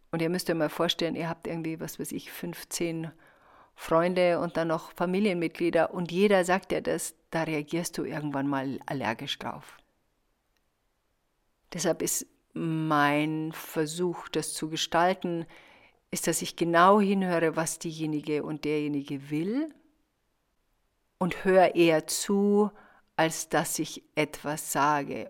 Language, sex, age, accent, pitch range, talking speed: German, female, 50-69, German, 150-175 Hz, 135 wpm